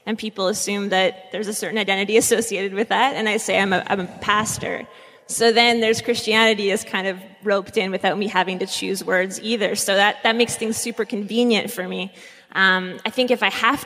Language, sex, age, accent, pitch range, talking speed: English, female, 20-39, American, 195-240 Hz, 215 wpm